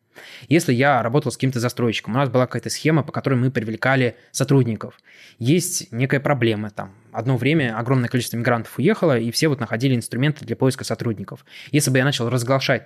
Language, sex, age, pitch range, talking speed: Russian, male, 20-39, 115-145 Hz, 180 wpm